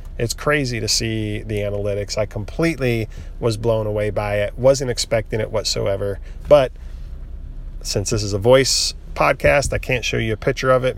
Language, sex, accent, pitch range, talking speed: English, male, American, 100-120 Hz, 175 wpm